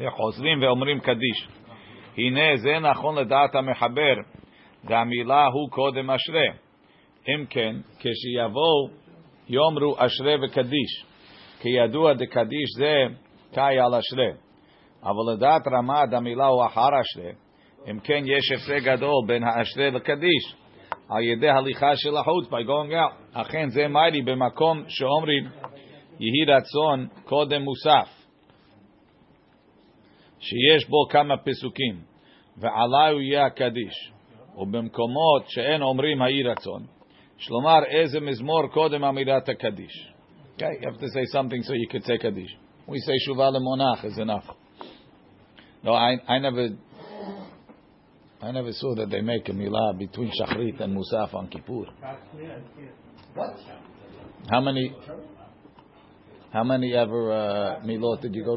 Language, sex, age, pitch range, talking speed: English, male, 50-69, 115-145 Hz, 100 wpm